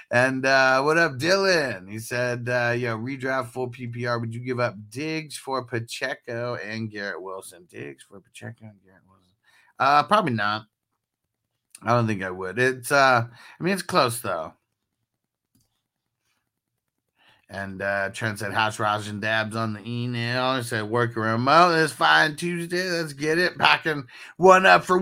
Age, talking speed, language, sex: 30-49, 165 wpm, English, male